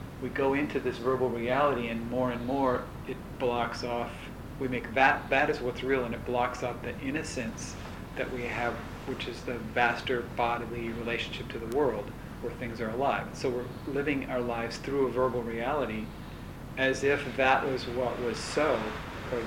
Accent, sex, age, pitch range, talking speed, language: American, male, 40-59, 120-130 Hz, 180 wpm, English